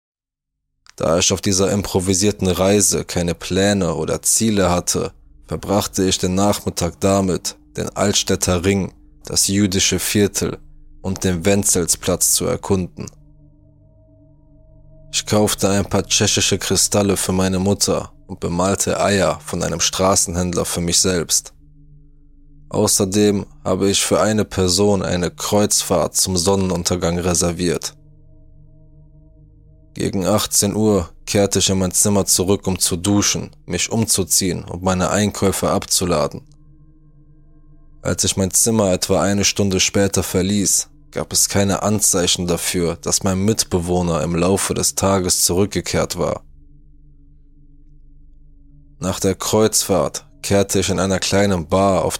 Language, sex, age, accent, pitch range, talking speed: German, male, 20-39, German, 90-105 Hz, 125 wpm